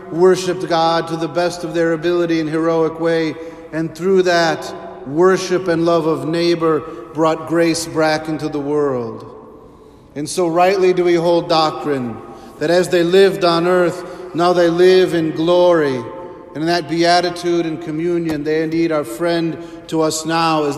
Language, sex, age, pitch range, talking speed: English, male, 50-69, 155-170 Hz, 165 wpm